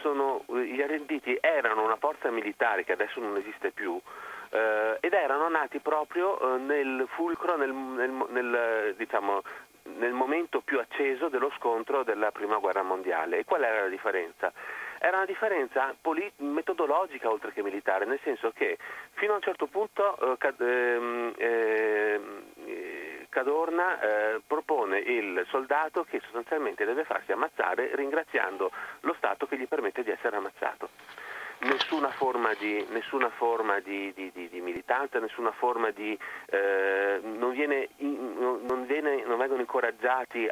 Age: 40-59